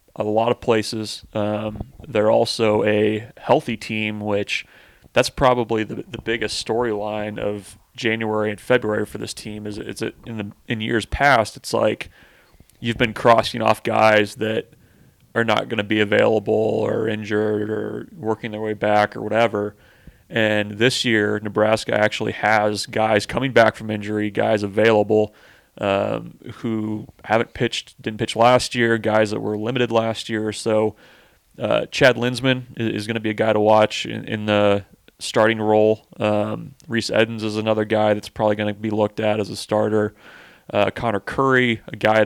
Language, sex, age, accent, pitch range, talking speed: English, male, 30-49, American, 105-115 Hz, 175 wpm